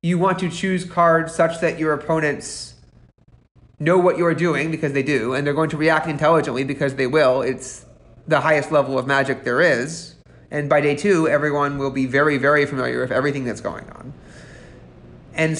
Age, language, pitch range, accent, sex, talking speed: 30-49, English, 145-185 Hz, American, male, 190 wpm